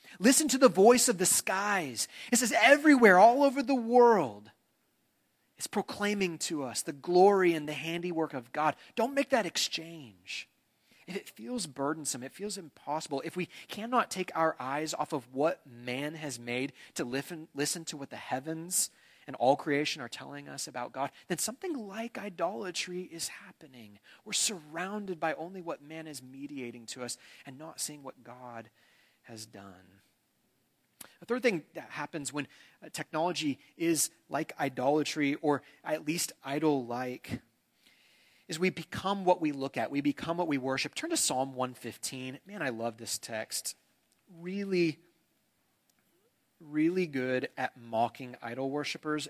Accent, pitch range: American, 130-180 Hz